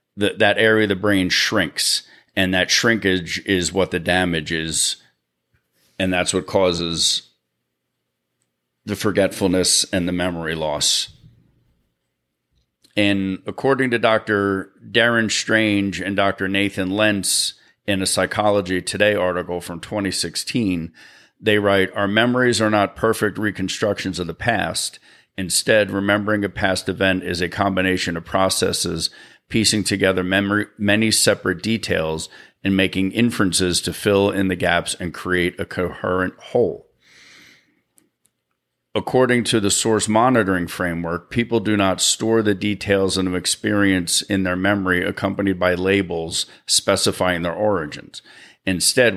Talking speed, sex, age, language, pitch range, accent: 130 wpm, male, 40-59, English, 90-105 Hz, American